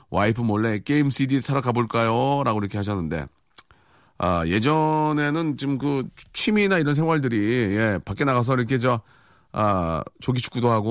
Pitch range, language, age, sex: 125-165 Hz, Korean, 40-59, male